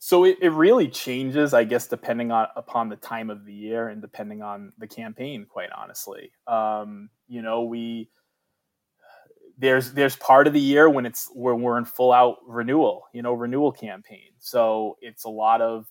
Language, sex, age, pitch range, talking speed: English, male, 20-39, 115-160 Hz, 190 wpm